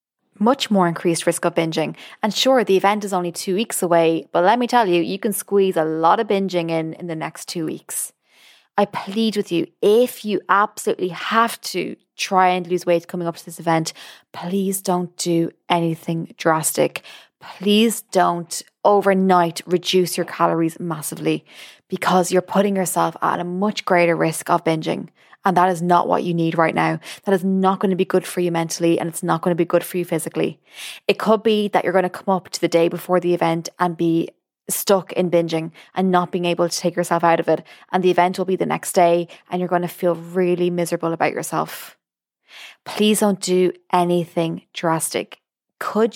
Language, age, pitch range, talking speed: English, 20-39, 170-200 Hz, 205 wpm